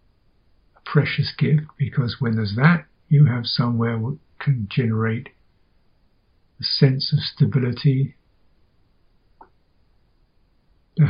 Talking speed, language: 90 wpm, English